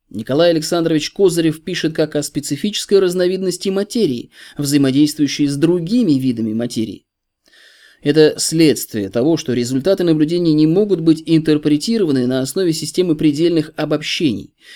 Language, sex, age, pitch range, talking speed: Russian, male, 20-39, 125-165 Hz, 120 wpm